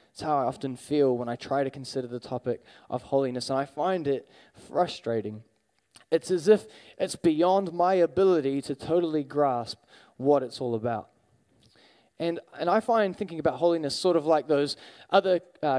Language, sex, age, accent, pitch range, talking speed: English, male, 20-39, Australian, 135-170 Hz, 175 wpm